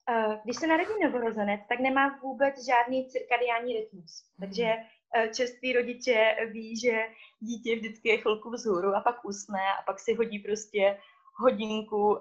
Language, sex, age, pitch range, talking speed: Czech, female, 20-39, 210-250 Hz, 145 wpm